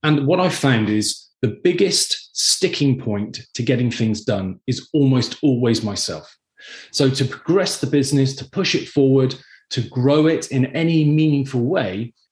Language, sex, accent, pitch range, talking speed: English, male, British, 115-150 Hz, 160 wpm